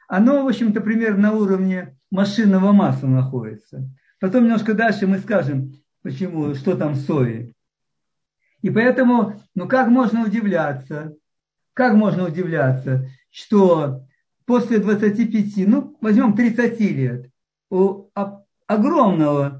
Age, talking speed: 50-69, 105 wpm